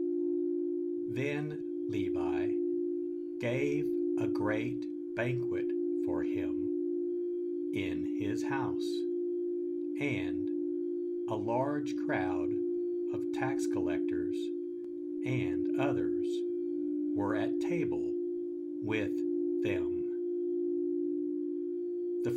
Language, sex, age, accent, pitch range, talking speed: English, male, 60-79, American, 320-340 Hz, 70 wpm